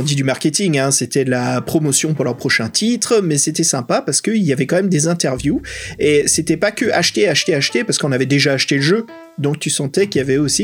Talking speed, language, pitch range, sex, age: 250 wpm, French, 130-170 Hz, male, 30-49